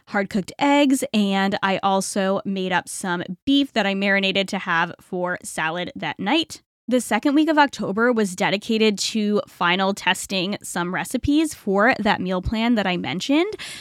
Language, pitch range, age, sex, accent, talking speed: English, 195-255 Hz, 20-39, female, American, 165 wpm